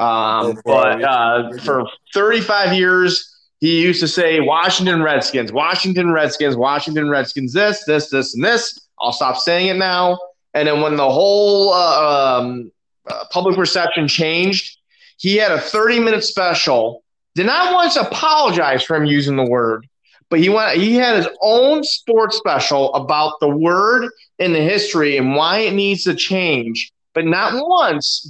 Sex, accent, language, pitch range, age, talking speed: male, American, English, 145-195 Hz, 30-49, 165 wpm